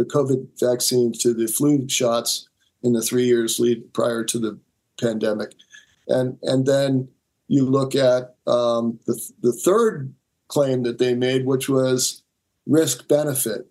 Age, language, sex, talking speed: 50-69, English, male, 155 wpm